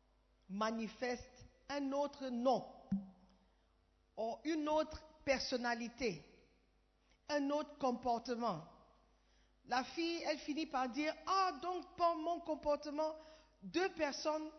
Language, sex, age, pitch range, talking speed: French, female, 50-69, 225-305 Hz, 105 wpm